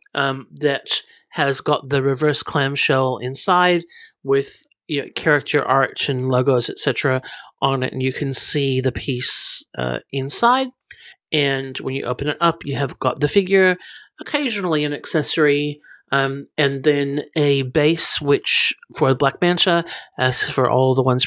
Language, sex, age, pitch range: English, male, 40-59, 130-155 Hz